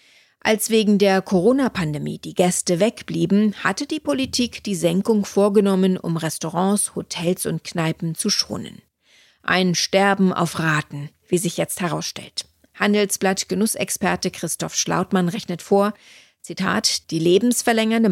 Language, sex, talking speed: German, female, 120 wpm